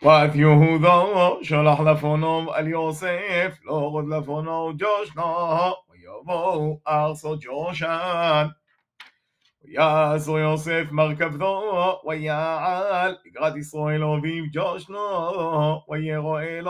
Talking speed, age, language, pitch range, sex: 35 wpm, 30-49, Hebrew, 155-180 Hz, male